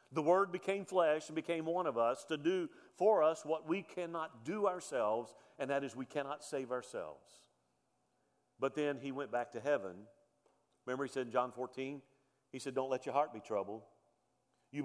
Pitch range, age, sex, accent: 120-160 Hz, 50-69, male, American